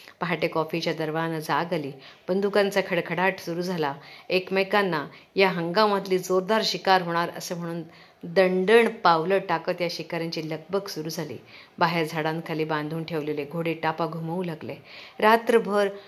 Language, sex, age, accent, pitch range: Marathi, female, 40-59, native, 165-195 Hz